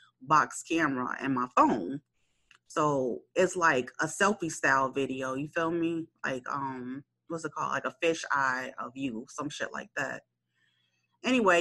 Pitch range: 145-200 Hz